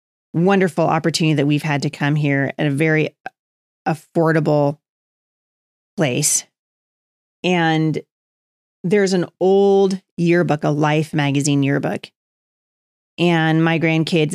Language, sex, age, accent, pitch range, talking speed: English, female, 30-49, American, 150-185 Hz, 105 wpm